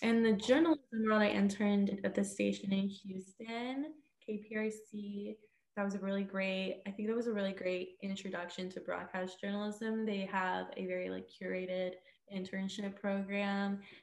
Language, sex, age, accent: English, female, 20-39, American